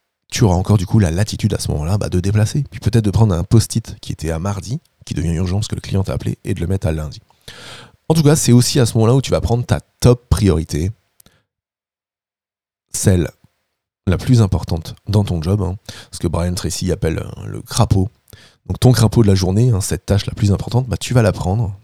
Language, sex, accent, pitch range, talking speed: French, male, French, 90-115 Hz, 235 wpm